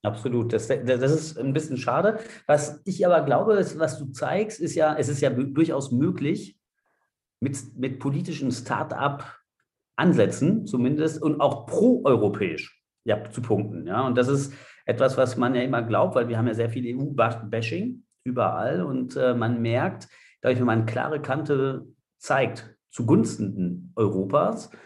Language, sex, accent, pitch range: German, male, German, 105-135 Hz